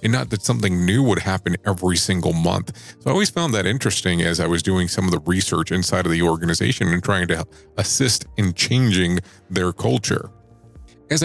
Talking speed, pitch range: 195 wpm, 90-115 Hz